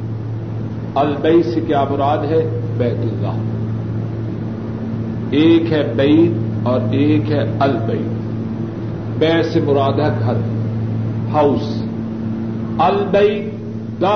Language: Urdu